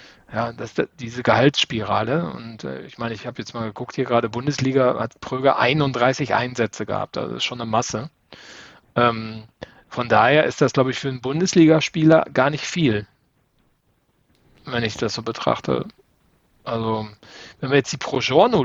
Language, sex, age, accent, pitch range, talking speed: German, male, 40-59, German, 115-140 Hz, 170 wpm